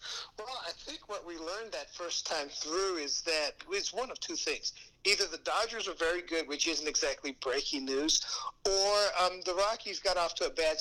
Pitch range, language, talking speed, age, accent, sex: 155-200 Hz, English, 205 wpm, 60-79, American, male